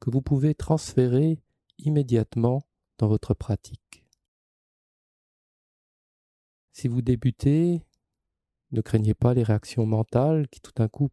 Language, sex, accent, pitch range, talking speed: French, male, French, 105-125 Hz, 115 wpm